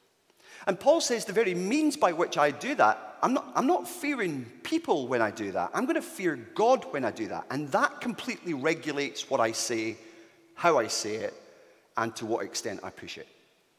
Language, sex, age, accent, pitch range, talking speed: English, male, 40-59, British, 140-215 Hz, 205 wpm